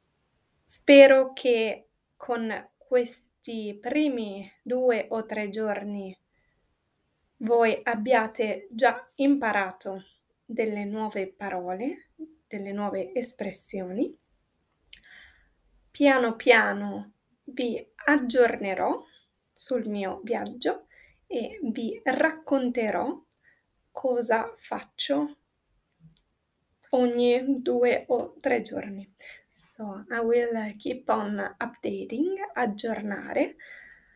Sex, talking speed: female, 75 wpm